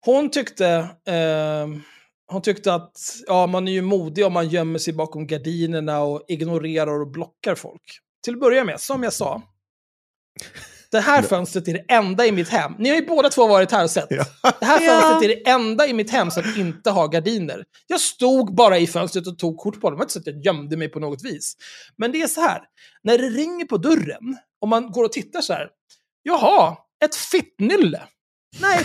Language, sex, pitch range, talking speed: Swedish, male, 170-260 Hz, 210 wpm